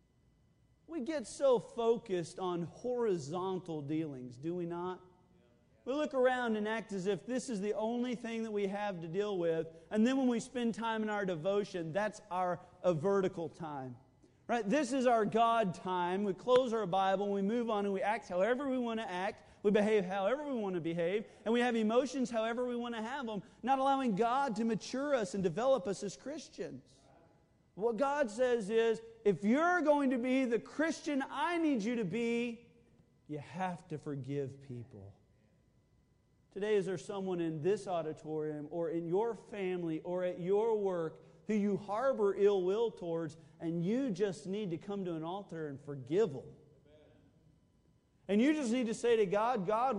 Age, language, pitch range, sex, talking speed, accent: 40-59, English, 175-235 Hz, male, 185 wpm, American